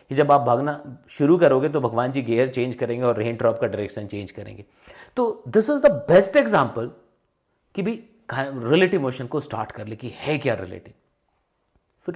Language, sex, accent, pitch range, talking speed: Hindi, male, native, 110-165 Hz, 185 wpm